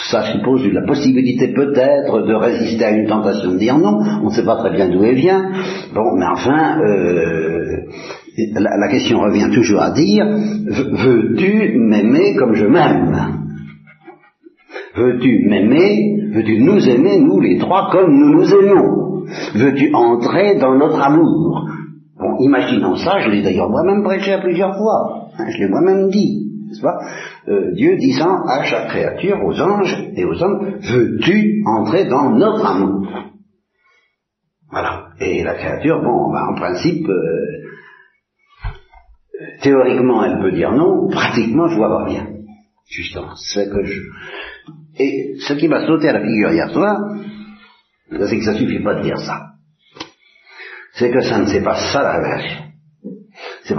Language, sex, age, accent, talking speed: Italian, male, 60-79, French, 160 wpm